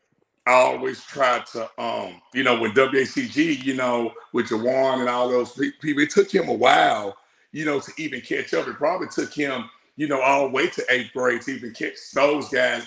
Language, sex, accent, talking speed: English, male, American, 210 wpm